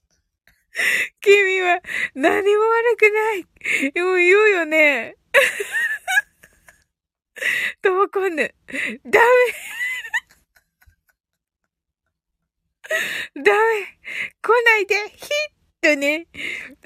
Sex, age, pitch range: female, 20-39, 290-430 Hz